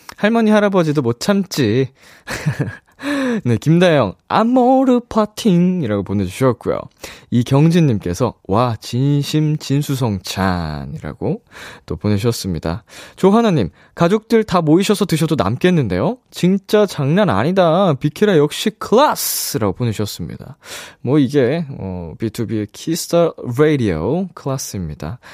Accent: native